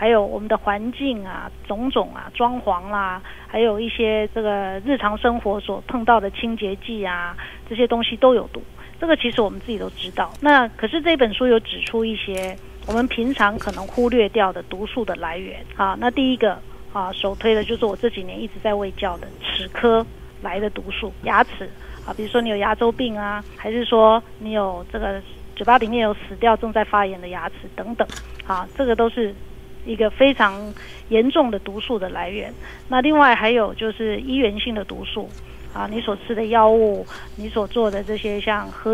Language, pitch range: Chinese, 205-235 Hz